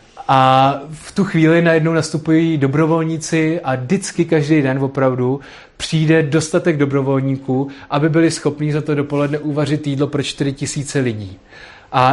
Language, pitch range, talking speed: Czech, 120-155 Hz, 140 wpm